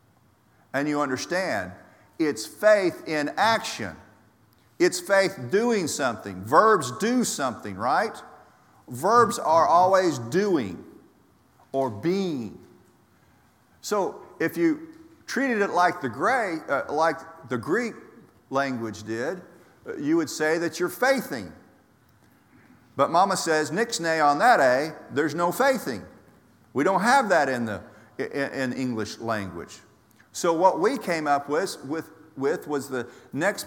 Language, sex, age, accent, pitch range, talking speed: English, male, 50-69, American, 125-195 Hz, 130 wpm